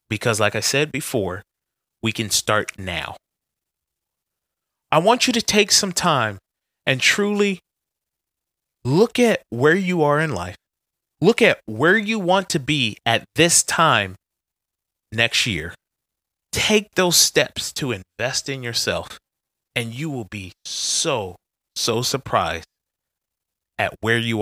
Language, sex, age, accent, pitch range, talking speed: English, male, 30-49, American, 90-150 Hz, 135 wpm